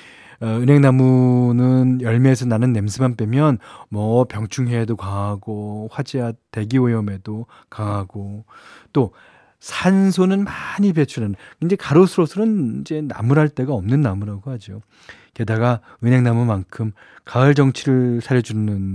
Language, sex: Korean, male